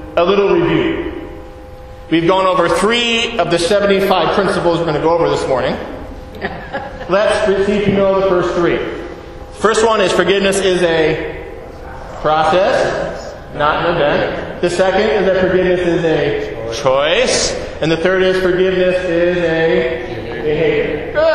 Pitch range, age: 165-225 Hz, 40-59